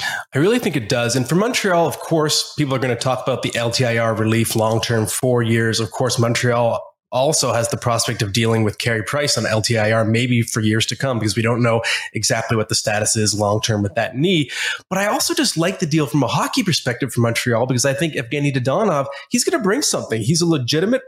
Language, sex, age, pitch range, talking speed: English, male, 20-39, 115-140 Hz, 230 wpm